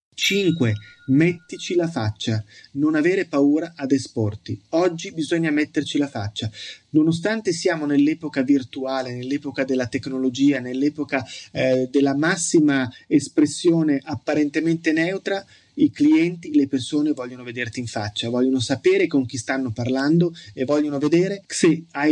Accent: native